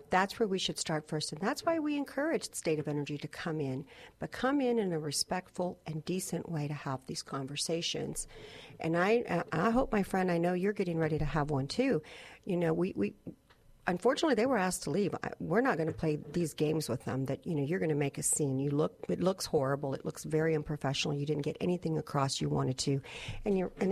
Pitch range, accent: 150-195 Hz, American